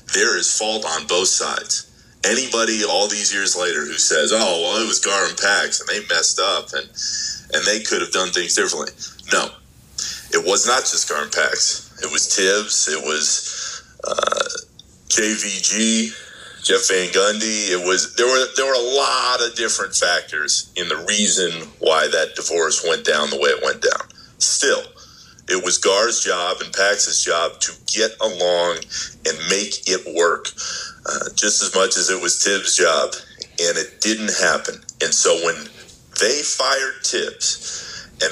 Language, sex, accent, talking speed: English, male, American, 170 wpm